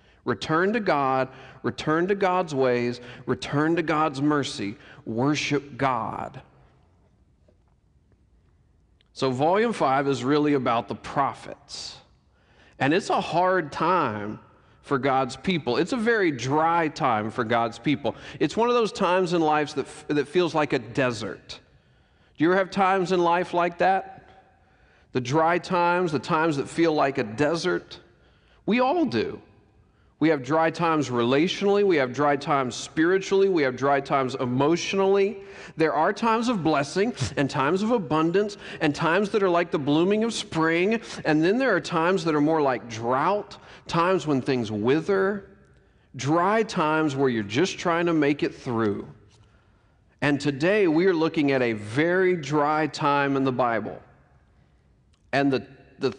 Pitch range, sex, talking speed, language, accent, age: 130-180 Hz, male, 155 wpm, English, American, 40-59